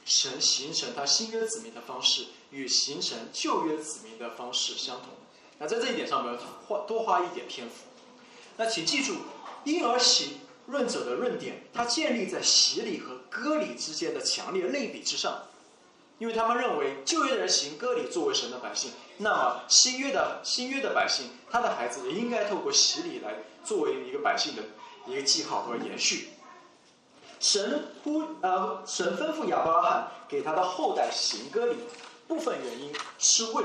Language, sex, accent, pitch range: Chinese, male, native, 225-370 Hz